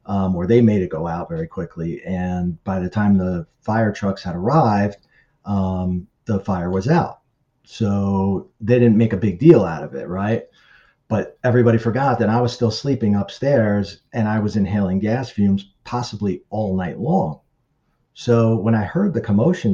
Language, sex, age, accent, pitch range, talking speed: English, male, 40-59, American, 95-115 Hz, 180 wpm